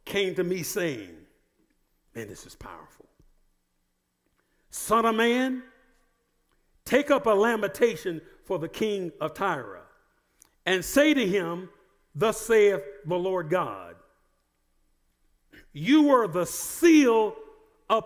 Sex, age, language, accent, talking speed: male, 50-69, English, American, 115 wpm